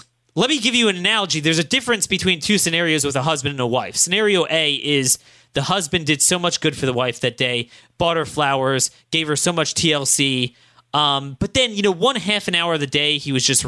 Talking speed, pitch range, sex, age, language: 240 wpm, 130-170 Hz, male, 30-49, English